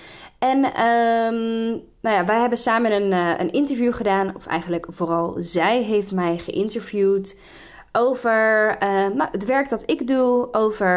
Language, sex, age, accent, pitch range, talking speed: Dutch, female, 20-39, Dutch, 180-230 Hz, 155 wpm